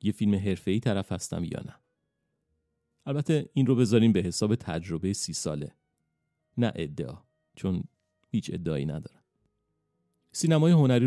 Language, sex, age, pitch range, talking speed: Persian, male, 40-59, 90-115 Hz, 130 wpm